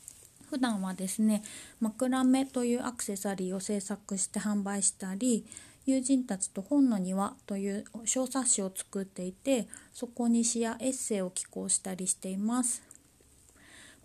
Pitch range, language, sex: 200-245 Hz, Japanese, female